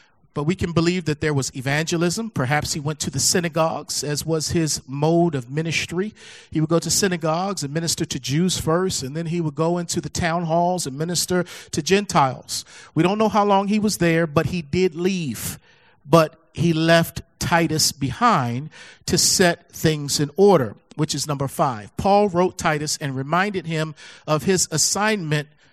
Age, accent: 40-59, American